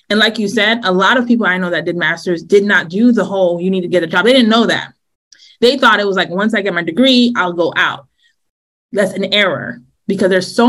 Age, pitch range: 20-39, 180-225 Hz